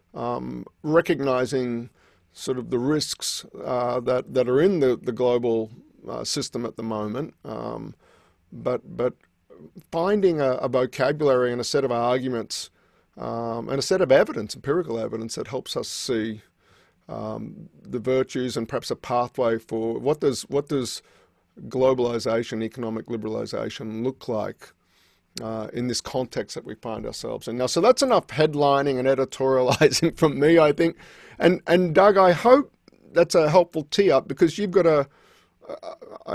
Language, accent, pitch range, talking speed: English, Australian, 120-150 Hz, 155 wpm